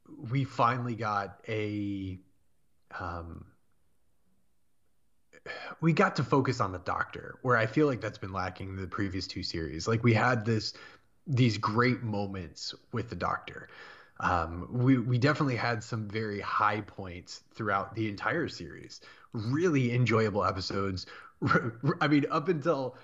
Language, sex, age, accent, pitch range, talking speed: English, male, 30-49, American, 100-130 Hz, 140 wpm